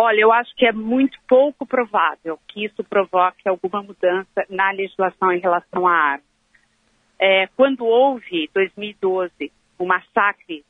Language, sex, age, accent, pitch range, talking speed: Portuguese, female, 40-59, Brazilian, 190-245 Hz, 150 wpm